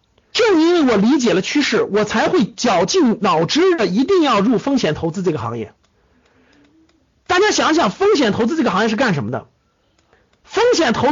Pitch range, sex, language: 205-335 Hz, male, Chinese